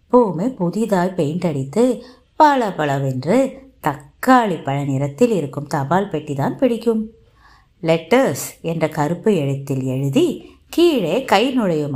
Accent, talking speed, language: native, 105 wpm, Tamil